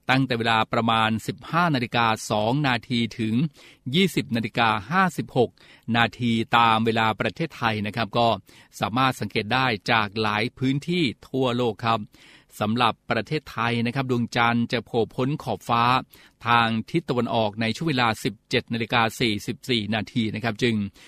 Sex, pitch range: male, 110-130 Hz